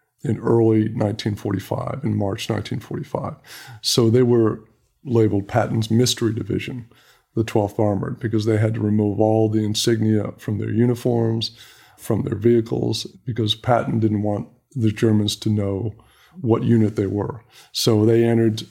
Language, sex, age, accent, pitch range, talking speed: English, male, 50-69, American, 105-120 Hz, 145 wpm